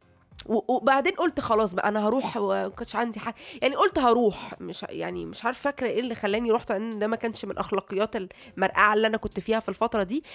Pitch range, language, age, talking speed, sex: 200-265 Hz, Arabic, 20-39, 195 wpm, female